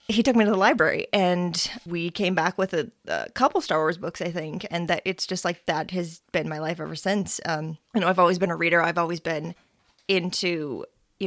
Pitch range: 170-200 Hz